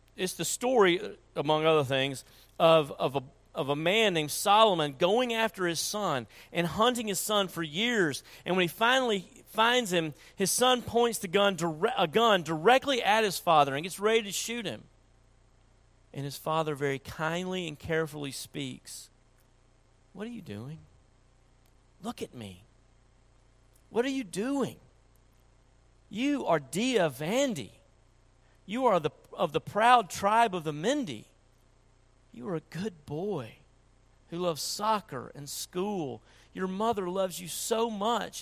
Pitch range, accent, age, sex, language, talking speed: 125-200 Hz, American, 40-59, male, English, 140 wpm